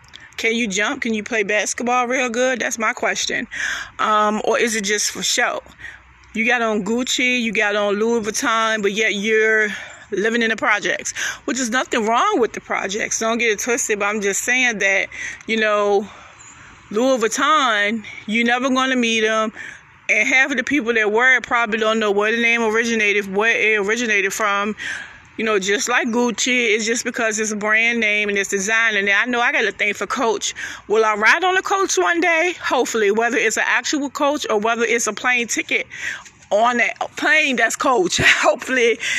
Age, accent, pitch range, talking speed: 20-39, American, 215-255 Hz, 200 wpm